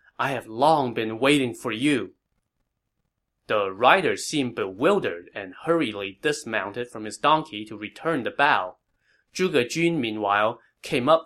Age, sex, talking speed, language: 20-39, male, 140 wpm, English